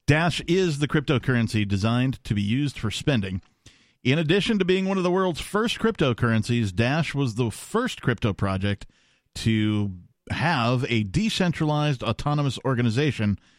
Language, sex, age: English, male, 50-69